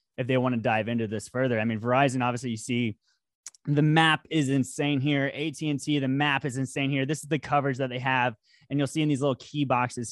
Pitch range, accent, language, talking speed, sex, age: 120-150 Hz, American, English, 235 wpm, male, 20-39